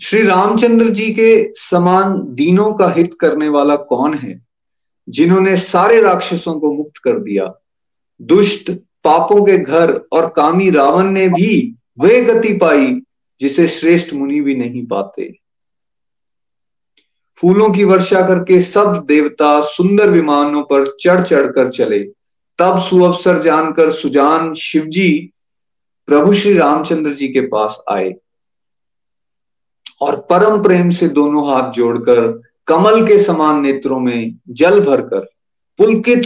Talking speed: 125 wpm